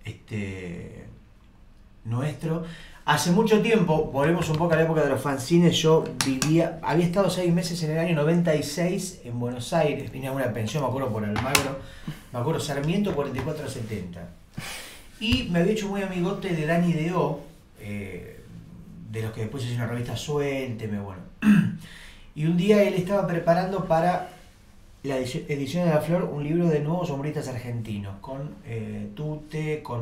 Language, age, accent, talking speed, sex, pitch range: Spanish, 30-49, Argentinian, 160 wpm, male, 115-165 Hz